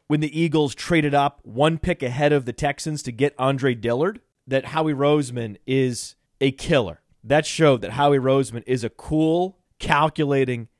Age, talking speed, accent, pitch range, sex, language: 30-49, 165 wpm, American, 125-155 Hz, male, English